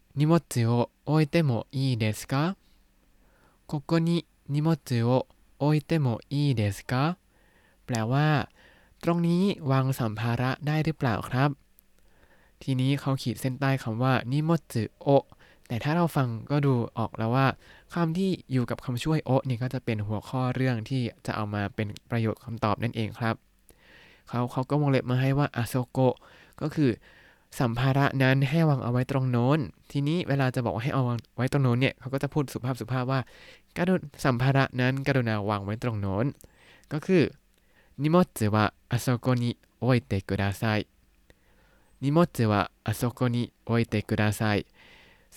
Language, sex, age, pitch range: Thai, male, 20-39, 115-145 Hz